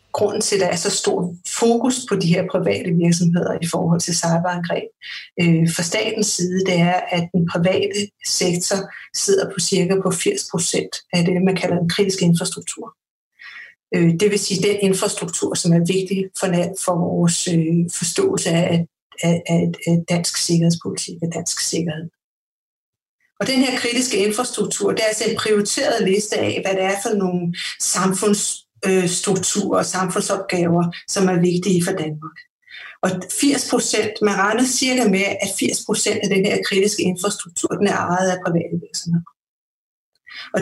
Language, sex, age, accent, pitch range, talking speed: Danish, female, 60-79, native, 175-210 Hz, 165 wpm